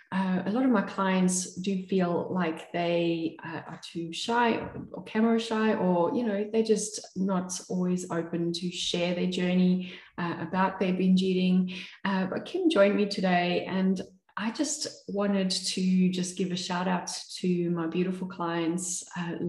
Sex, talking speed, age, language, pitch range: female, 170 wpm, 20-39, English, 175-205 Hz